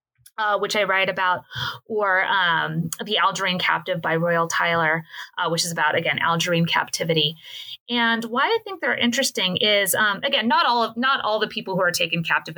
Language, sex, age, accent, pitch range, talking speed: English, female, 30-49, American, 170-240 Hz, 190 wpm